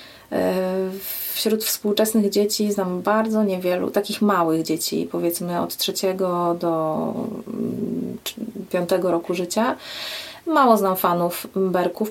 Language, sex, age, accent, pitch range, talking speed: Polish, female, 30-49, native, 185-215 Hz, 100 wpm